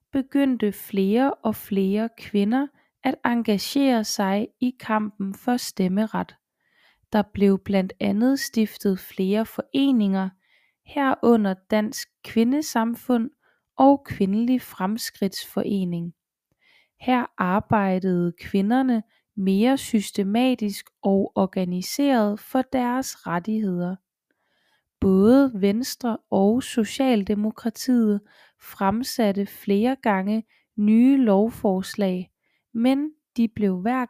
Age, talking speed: 20-39, 85 wpm